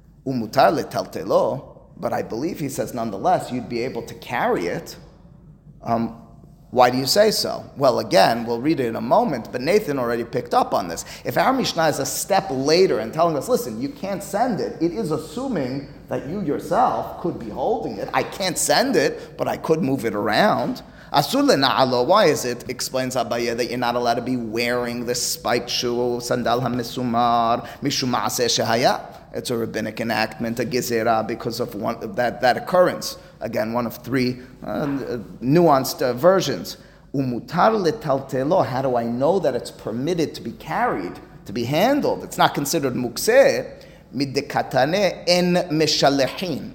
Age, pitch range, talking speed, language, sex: 30-49, 120-170 Hz, 155 wpm, English, male